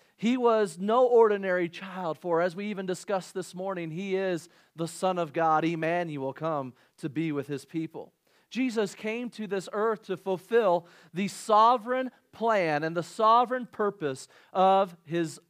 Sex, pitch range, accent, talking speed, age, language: male, 165-205 Hz, American, 160 wpm, 40-59, English